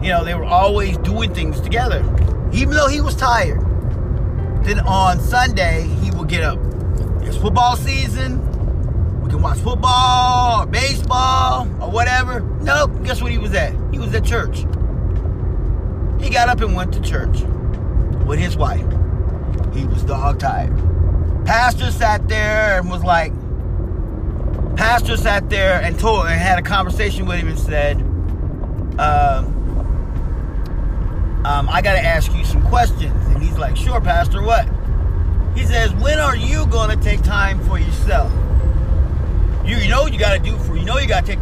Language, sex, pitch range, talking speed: English, male, 80-95 Hz, 160 wpm